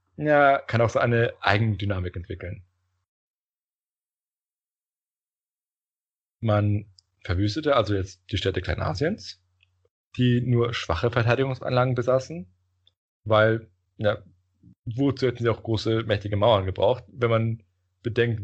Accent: German